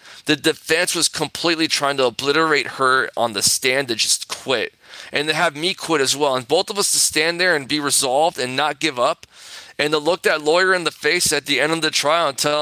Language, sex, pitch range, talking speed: English, male, 135-170 Hz, 240 wpm